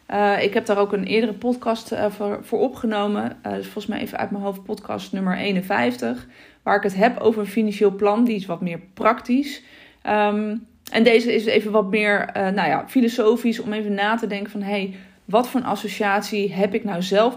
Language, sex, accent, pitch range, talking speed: Dutch, female, Dutch, 200-235 Hz, 215 wpm